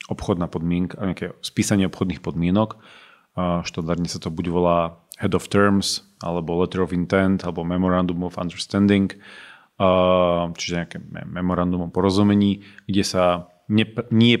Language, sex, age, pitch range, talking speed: Slovak, male, 30-49, 85-95 Hz, 130 wpm